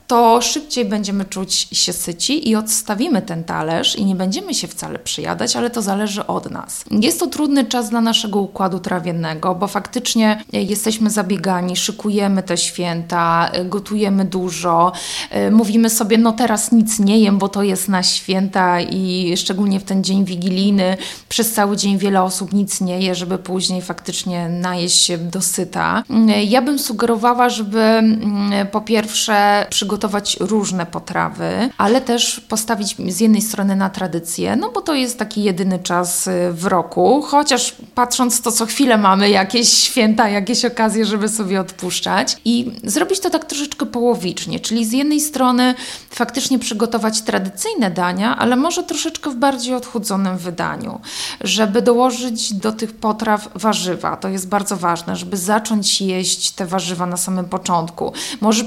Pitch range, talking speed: 190-235 Hz, 155 wpm